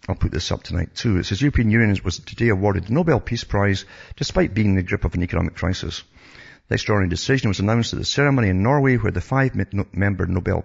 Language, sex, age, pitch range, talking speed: English, male, 50-69, 90-110 Hz, 225 wpm